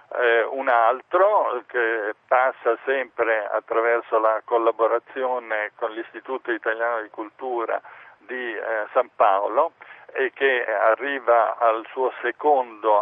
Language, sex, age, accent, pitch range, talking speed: Italian, male, 50-69, native, 105-130 Hz, 110 wpm